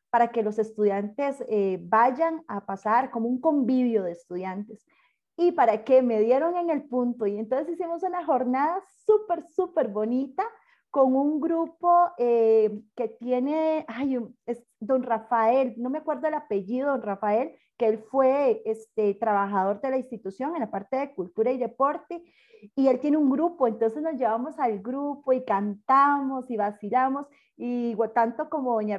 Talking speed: 165 wpm